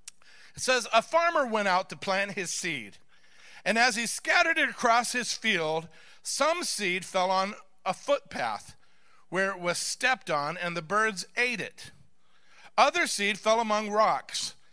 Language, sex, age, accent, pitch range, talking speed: English, male, 50-69, American, 180-245 Hz, 155 wpm